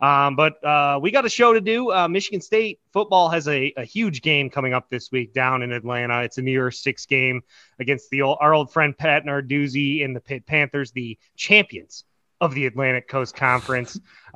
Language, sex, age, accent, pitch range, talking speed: English, male, 20-39, American, 125-150 Hz, 210 wpm